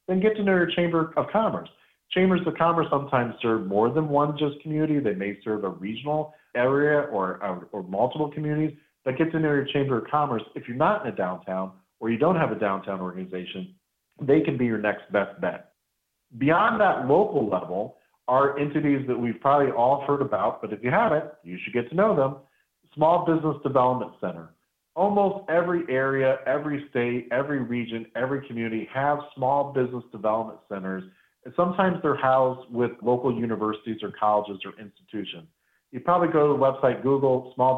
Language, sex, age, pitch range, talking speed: English, male, 40-59, 110-145 Hz, 185 wpm